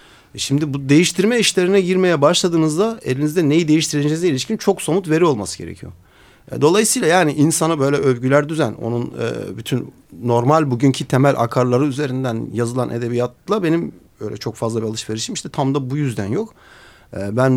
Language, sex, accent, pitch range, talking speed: Turkish, male, native, 110-150 Hz, 145 wpm